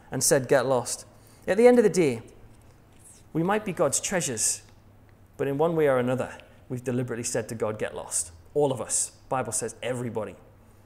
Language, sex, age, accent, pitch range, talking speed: English, male, 30-49, British, 115-160 Hz, 195 wpm